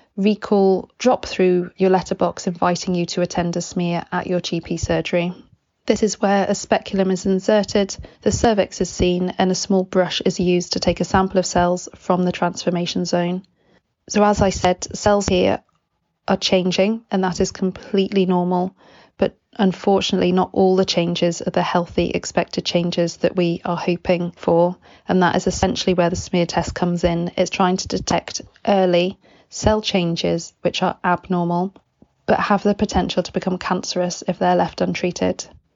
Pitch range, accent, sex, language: 175-195 Hz, British, female, English